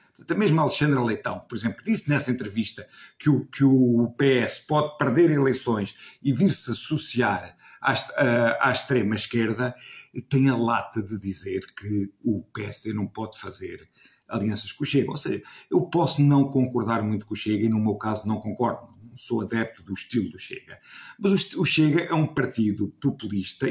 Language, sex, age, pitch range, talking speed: Portuguese, male, 50-69, 110-140 Hz, 175 wpm